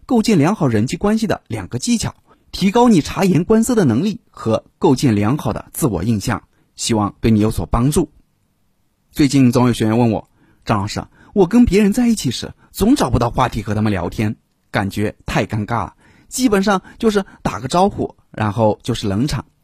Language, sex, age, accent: Chinese, male, 30-49, native